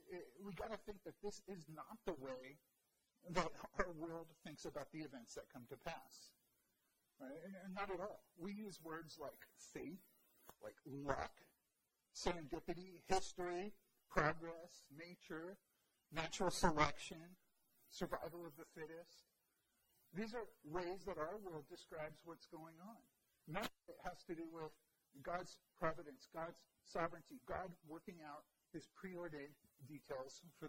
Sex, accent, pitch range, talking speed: male, American, 155-190 Hz, 140 wpm